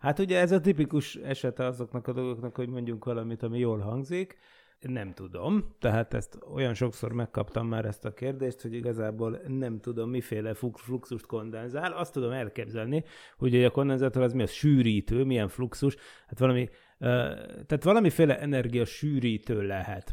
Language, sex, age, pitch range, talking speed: Hungarian, male, 30-49, 115-130 Hz, 155 wpm